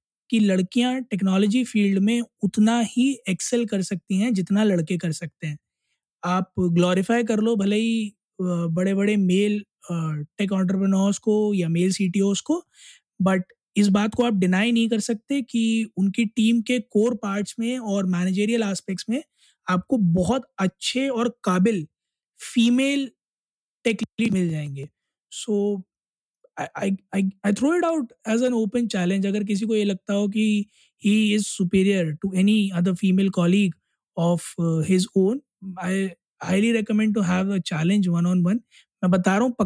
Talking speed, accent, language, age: 130 wpm, native, Hindi, 20-39